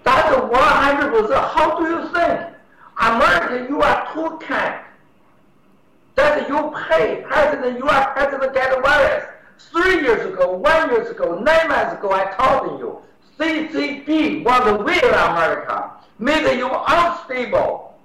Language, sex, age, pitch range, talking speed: English, male, 60-79, 225-320 Hz, 135 wpm